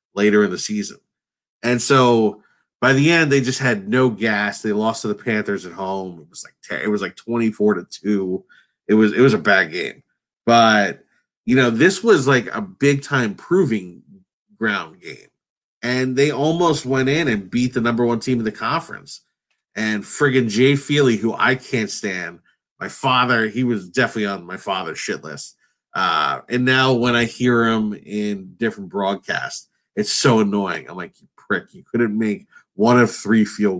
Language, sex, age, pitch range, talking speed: English, male, 30-49, 105-135 Hz, 190 wpm